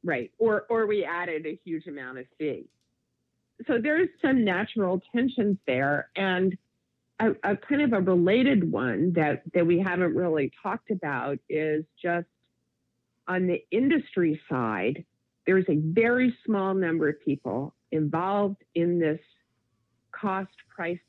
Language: English